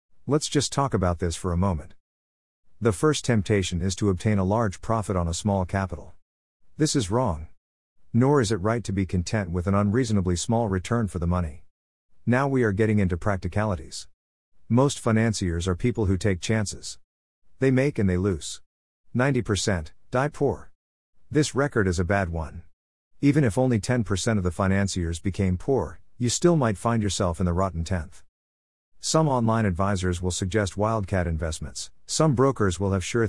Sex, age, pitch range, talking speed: male, 50-69, 90-115 Hz, 175 wpm